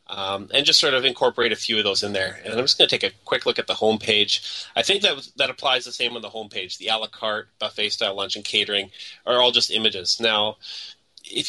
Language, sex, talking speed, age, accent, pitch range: English, male, 265 wpm, 30-49, American, 105-130 Hz